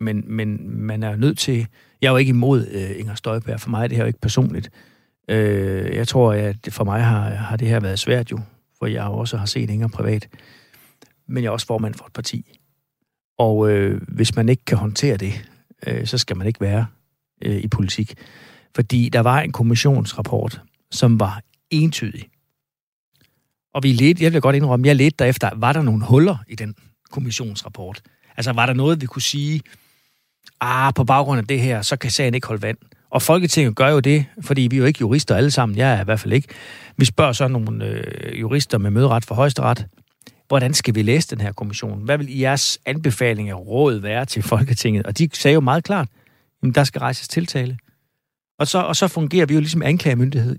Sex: male